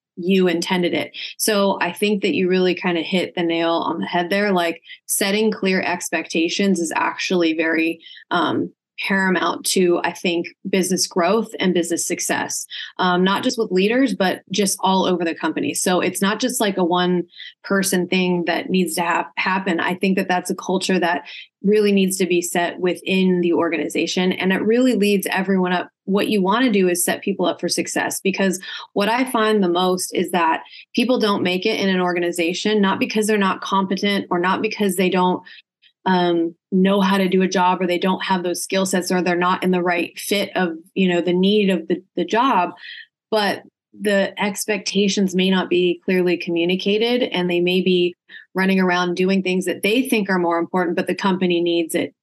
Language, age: English, 20-39